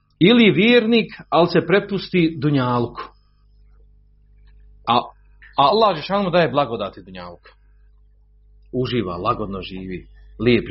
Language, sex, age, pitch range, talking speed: Croatian, male, 40-59, 95-160 Hz, 100 wpm